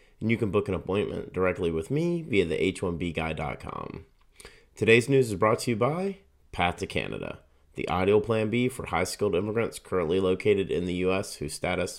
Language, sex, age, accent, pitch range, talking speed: English, male, 30-49, American, 85-130 Hz, 180 wpm